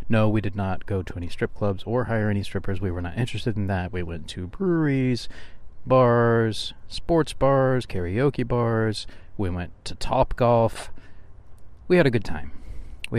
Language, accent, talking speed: English, American, 175 wpm